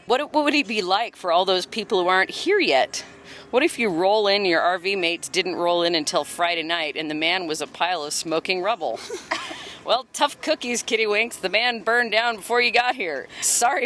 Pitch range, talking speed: 190-290 Hz, 220 wpm